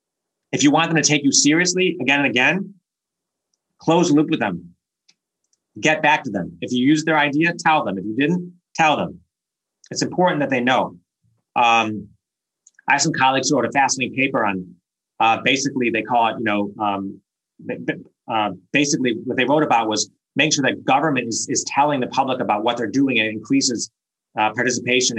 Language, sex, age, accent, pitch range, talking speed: English, male, 30-49, American, 105-140 Hz, 185 wpm